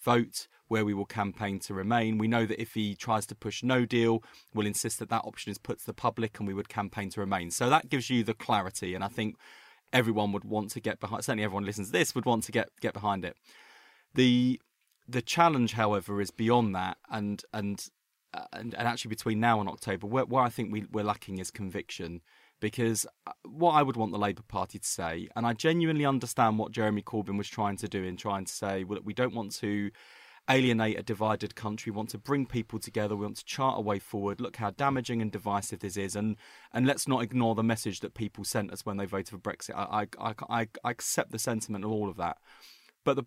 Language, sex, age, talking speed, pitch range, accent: English, male, 20-39, 235 wpm, 100-120 Hz, British